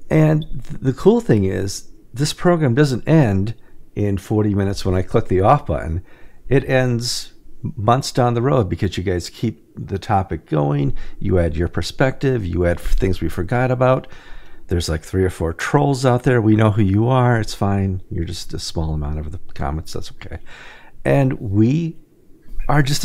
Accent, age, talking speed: American, 50-69, 180 wpm